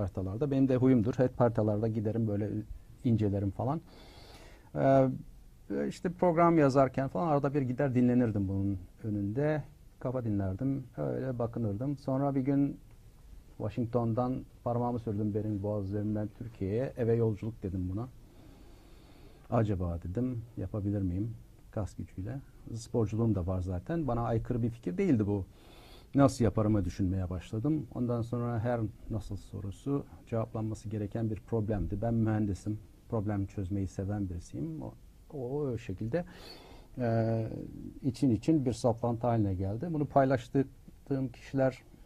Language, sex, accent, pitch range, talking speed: Turkish, male, native, 105-125 Hz, 125 wpm